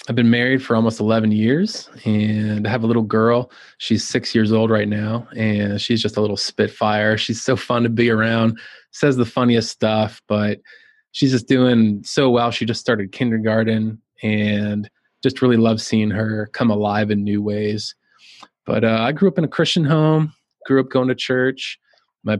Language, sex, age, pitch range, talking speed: English, male, 20-39, 110-120 Hz, 190 wpm